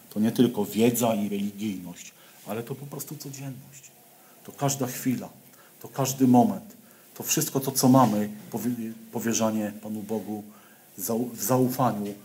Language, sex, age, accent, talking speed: Polish, male, 50-69, native, 130 wpm